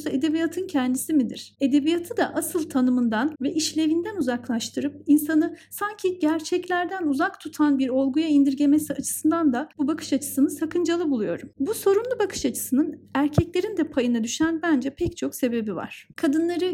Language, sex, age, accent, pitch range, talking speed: Turkish, female, 40-59, native, 275-335 Hz, 140 wpm